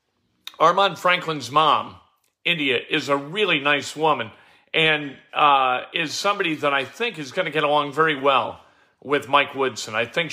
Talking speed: 165 wpm